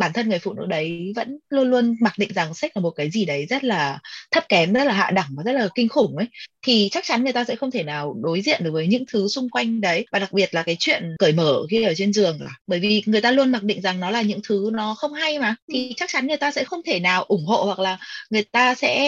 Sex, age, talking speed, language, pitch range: female, 20-39, 295 wpm, Vietnamese, 185-245 Hz